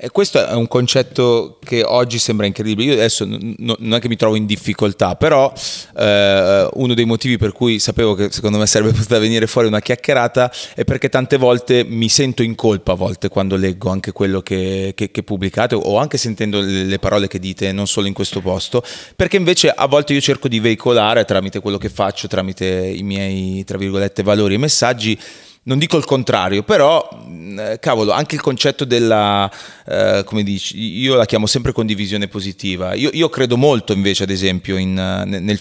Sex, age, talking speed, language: male, 30-49, 195 wpm, Italian